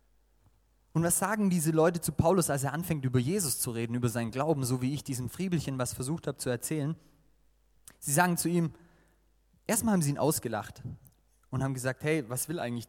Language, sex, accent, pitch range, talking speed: German, male, German, 120-165 Hz, 200 wpm